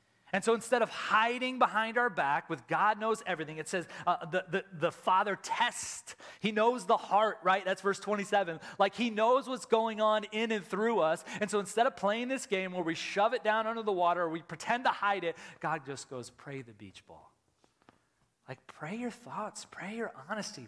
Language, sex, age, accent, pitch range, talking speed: English, male, 30-49, American, 160-230 Hz, 210 wpm